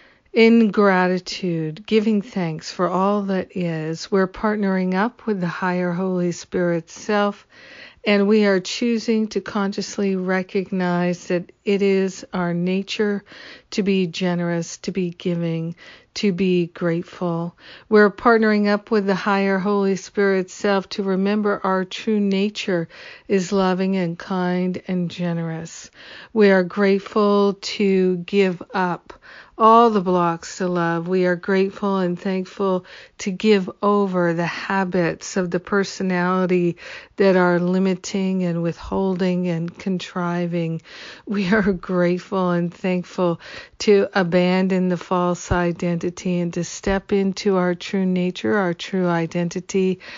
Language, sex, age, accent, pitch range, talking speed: English, female, 50-69, American, 175-200 Hz, 130 wpm